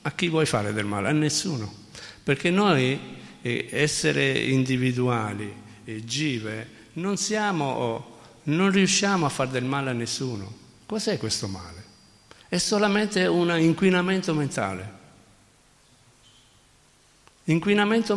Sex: male